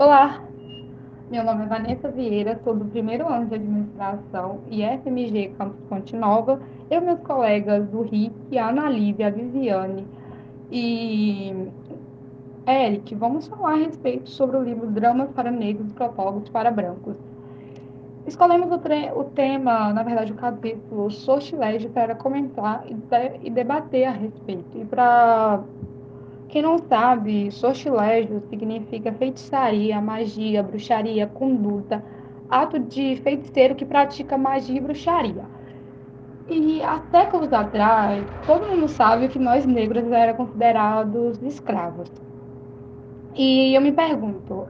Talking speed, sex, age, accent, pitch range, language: 130 wpm, female, 10-29, Brazilian, 205-260 Hz, Portuguese